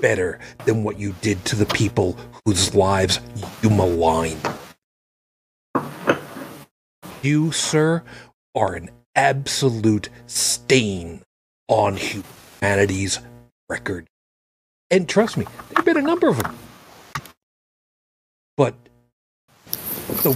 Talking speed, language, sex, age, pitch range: 95 wpm, English, male, 40-59, 100-135 Hz